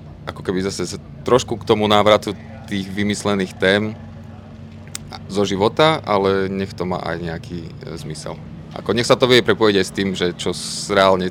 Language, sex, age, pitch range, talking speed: Slovak, male, 30-49, 75-100 Hz, 165 wpm